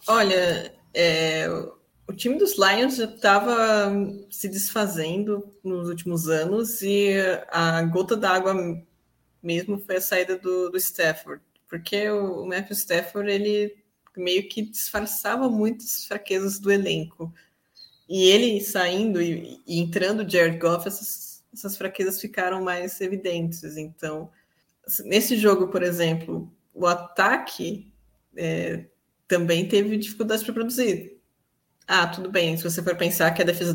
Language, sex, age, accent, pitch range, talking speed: English, female, 20-39, Brazilian, 170-205 Hz, 125 wpm